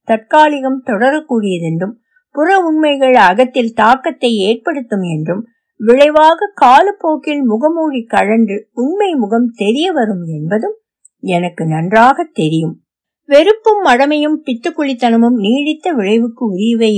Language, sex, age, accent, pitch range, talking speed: Tamil, female, 60-79, native, 205-290 Hz, 90 wpm